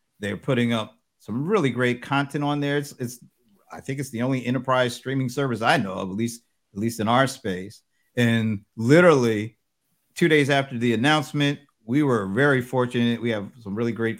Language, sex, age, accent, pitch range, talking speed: English, male, 50-69, American, 115-140 Hz, 190 wpm